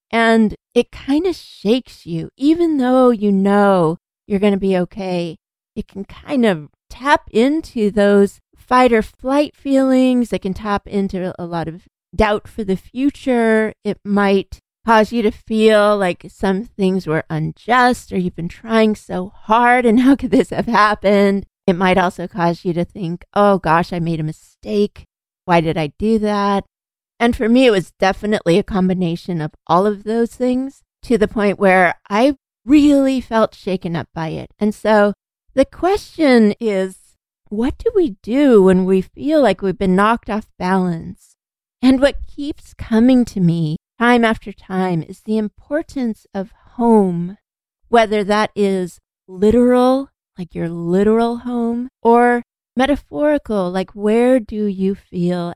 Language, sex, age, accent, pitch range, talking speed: English, female, 40-59, American, 185-240 Hz, 160 wpm